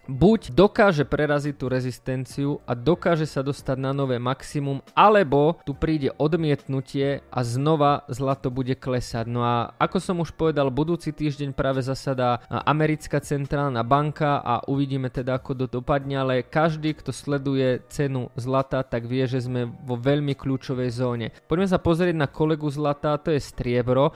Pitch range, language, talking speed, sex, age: 130-155 Hz, Slovak, 155 wpm, male, 20-39